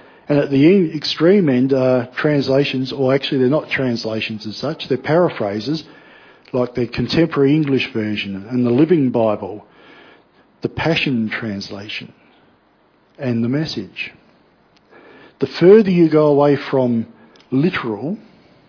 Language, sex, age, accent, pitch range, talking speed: English, male, 50-69, Australian, 120-155 Hz, 120 wpm